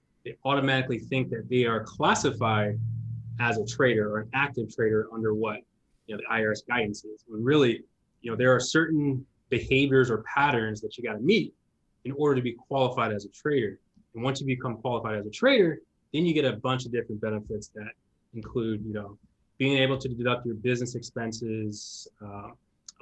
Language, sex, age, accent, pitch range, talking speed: English, male, 20-39, American, 110-135 Hz, 190 wpm